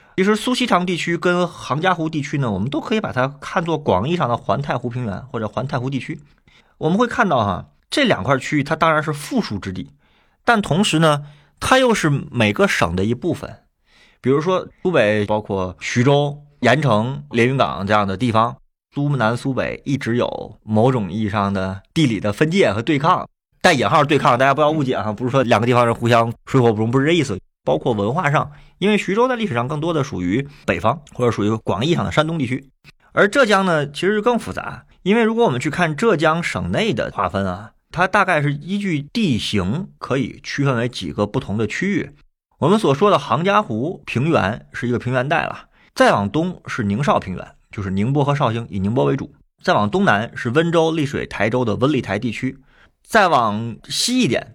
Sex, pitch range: male, 110-165 Hz